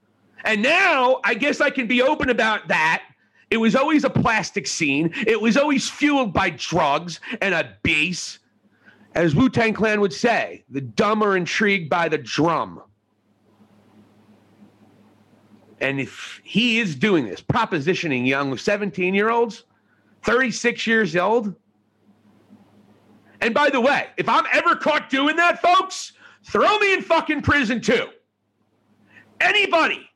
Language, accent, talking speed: English, American, 135 wpm